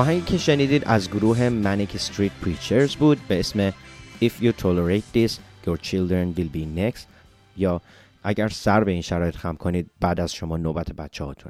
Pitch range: 85-110 Hz